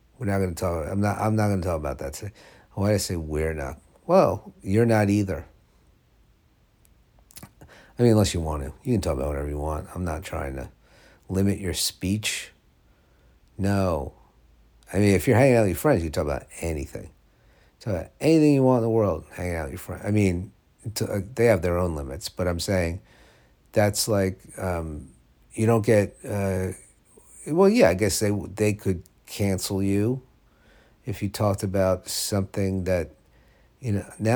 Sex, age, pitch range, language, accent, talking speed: male, 50-69, 80-105 Hz, English, American, 185 wpm